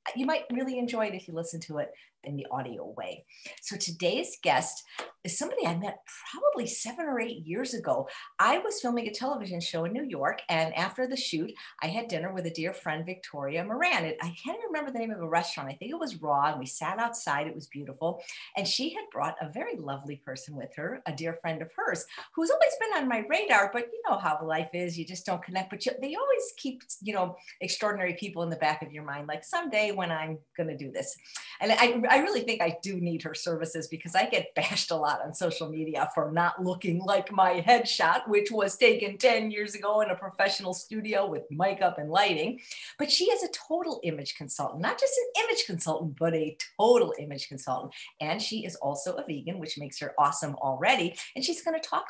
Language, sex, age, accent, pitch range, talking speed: English, female, 50-69, American, 160-240 Hz, 225 wpm